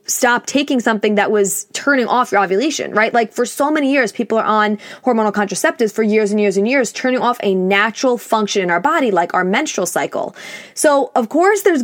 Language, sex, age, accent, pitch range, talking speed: English, female, 20-39, American, 205-265 Hz, 215 wpm